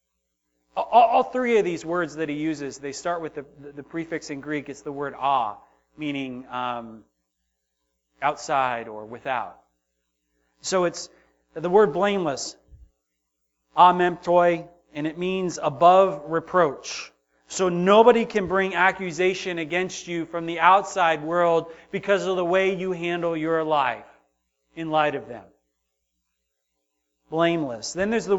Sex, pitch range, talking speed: male, 140-200 Hz, 135 wpm